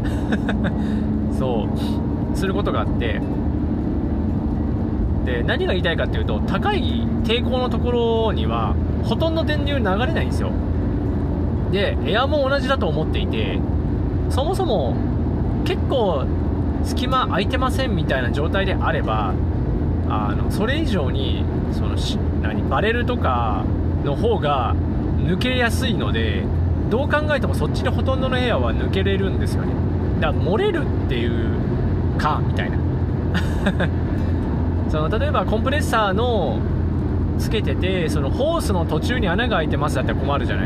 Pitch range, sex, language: 75-100 Hz, male, Japanese